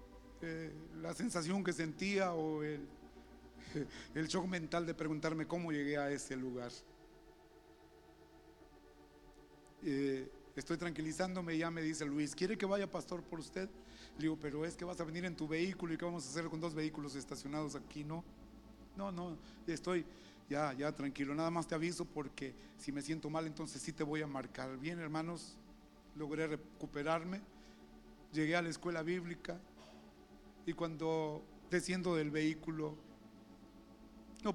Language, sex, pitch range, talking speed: Spanish, male, 135-170 Hz, 155 wpm